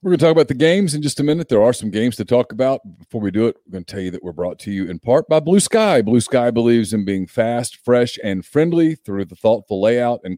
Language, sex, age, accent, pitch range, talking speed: English, male, 40-59, American, 95-130 Hz, 295 wpm